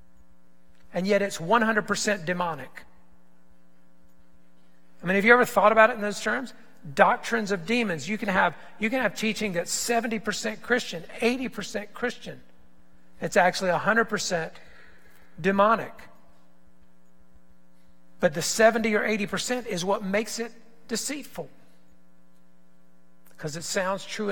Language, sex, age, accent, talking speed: English, male, 50-69, American, 115 wpm